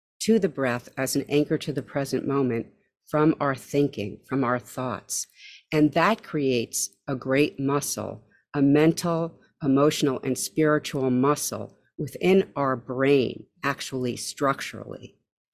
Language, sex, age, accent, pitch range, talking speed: English, female, 50-69, American, 125-160 Hz, 125 wpm